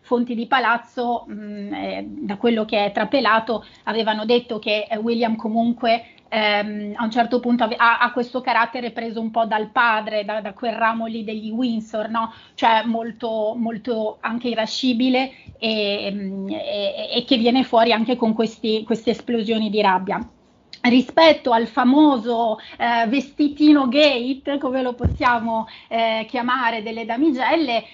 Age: 30-49